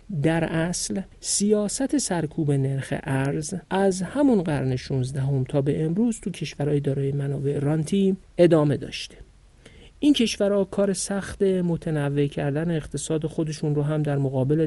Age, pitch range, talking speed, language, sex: 50-69, 145-185 Hz, 135 wpm, Persian, male